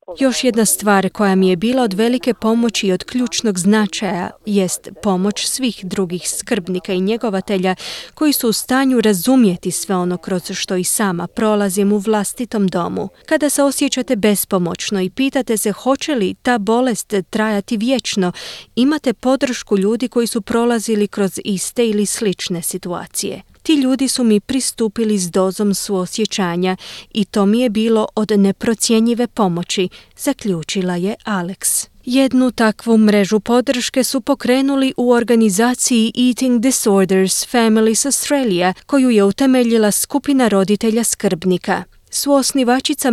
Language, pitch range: Croatian, 190-245 Hz